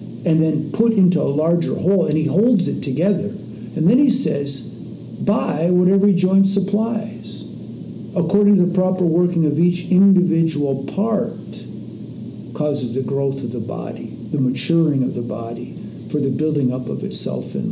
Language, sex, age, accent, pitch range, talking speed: English, male, 60-79, American, 140-195 Hz, 160 wpm